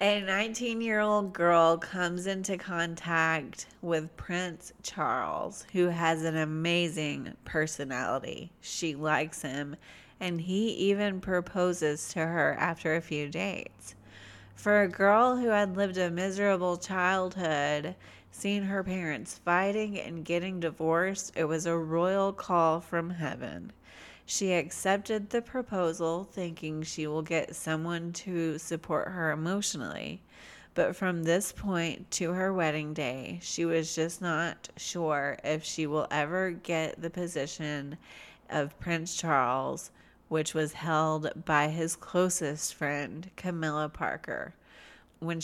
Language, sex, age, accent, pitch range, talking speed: English, female, 30-49, American, 155-180 Hz, 125 wpm